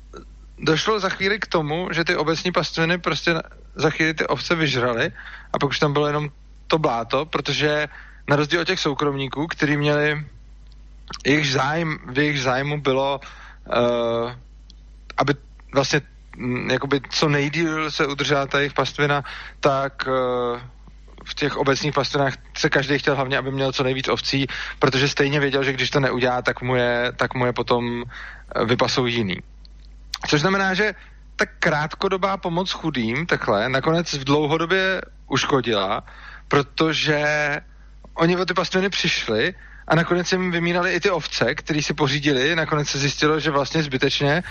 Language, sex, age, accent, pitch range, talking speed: Czech, male, 20-39, native, 135-160 Hz, 150 wpm